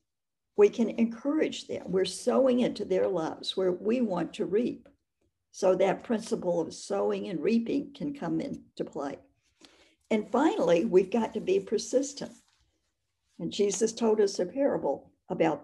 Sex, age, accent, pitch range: female, 60-79, American, 175-235 Hz